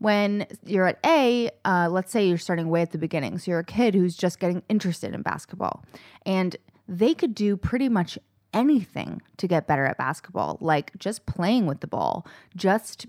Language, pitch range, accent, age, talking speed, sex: English, 170-210 Hz, American, 20-39, 195 wpm, female